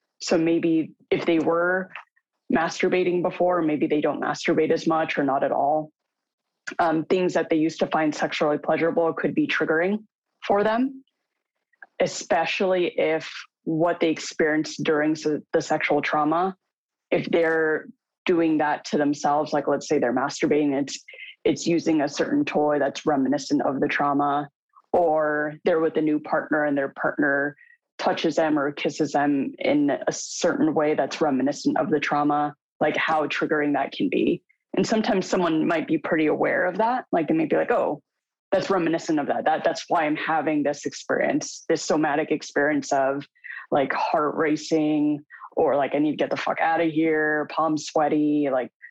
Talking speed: 170 wpm